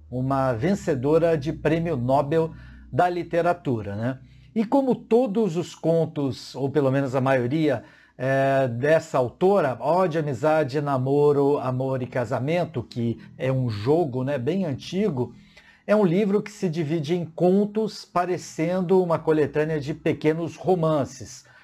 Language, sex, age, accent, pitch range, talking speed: Portuguese, male, 50-69, Brazilian, 140-175 Hz, 130 wpm